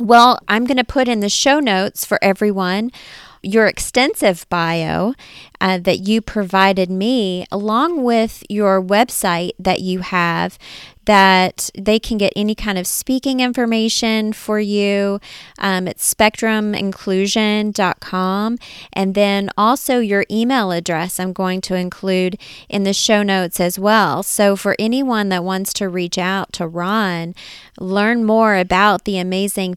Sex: female